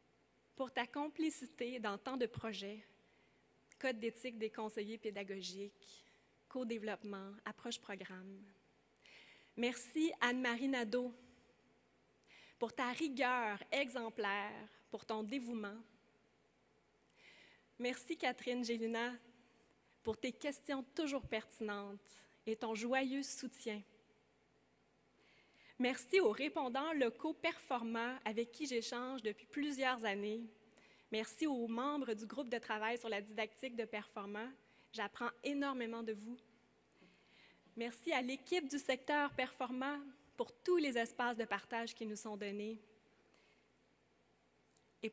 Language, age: French, 20-39